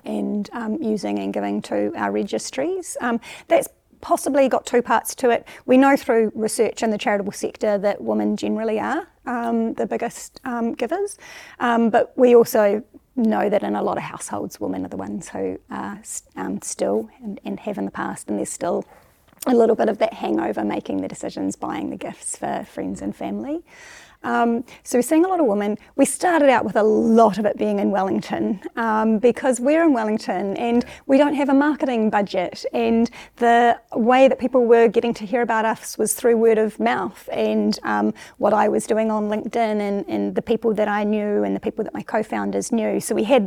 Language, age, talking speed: English, 30-49, 205 wpm